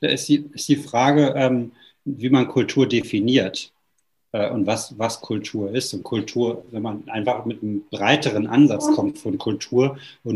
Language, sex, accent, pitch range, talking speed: German, male, German, 115-145 Hz, 170 wpm